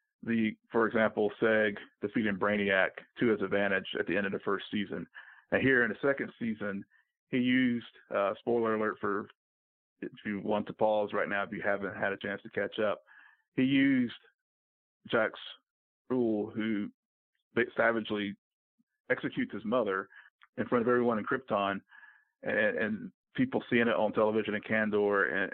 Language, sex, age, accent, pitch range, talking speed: English, male, 50-69, American, 100-120 Hz, 160 wpm